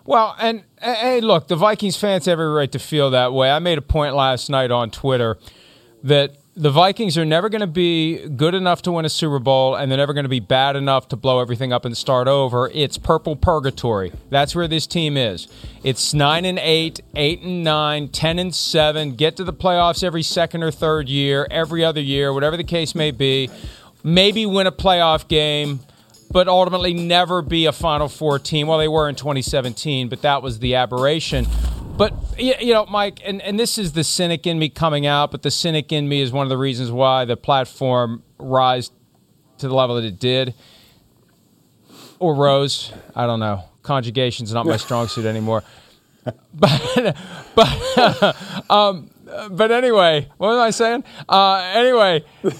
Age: 40-59